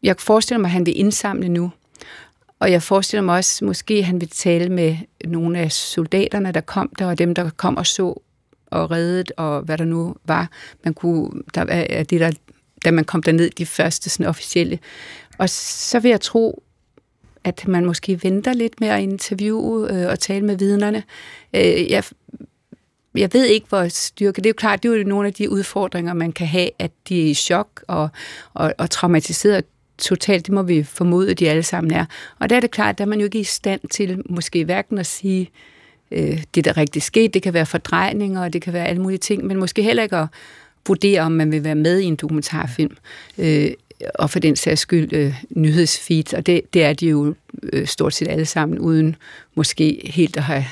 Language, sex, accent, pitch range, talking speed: Danish, female, native, 160-195 Hz, 210 wpm